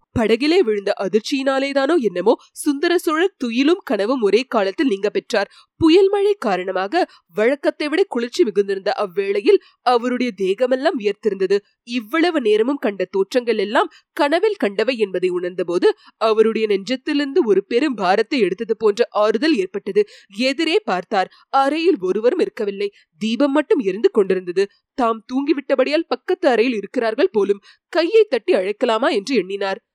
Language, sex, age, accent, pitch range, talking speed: Tamil, female, 20-39, native, 220-370 Hz, 90 wpm